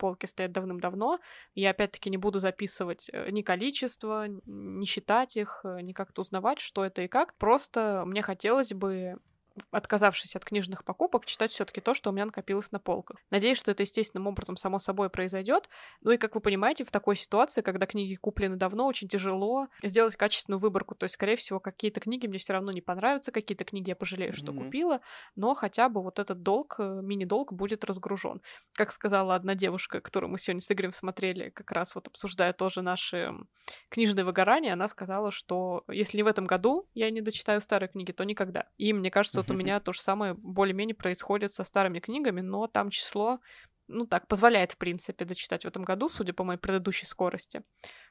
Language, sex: Russian, female